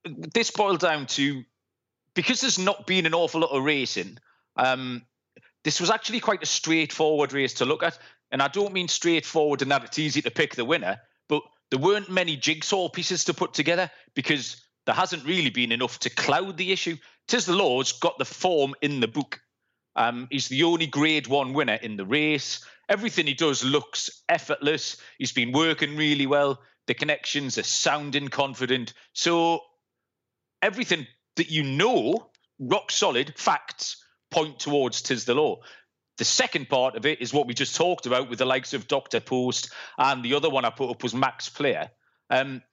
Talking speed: 185 wpm